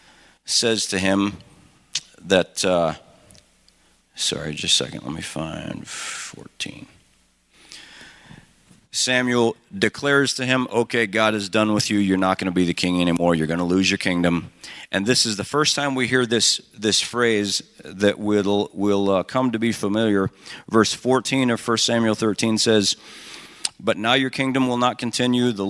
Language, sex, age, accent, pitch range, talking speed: English, male, 40-59, American, 95-120 Hz, 165 wpm